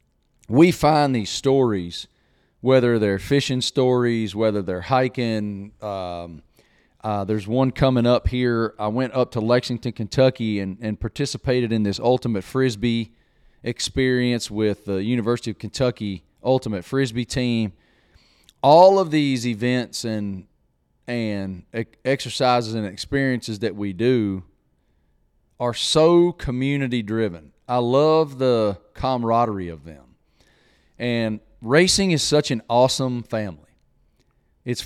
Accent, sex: American, male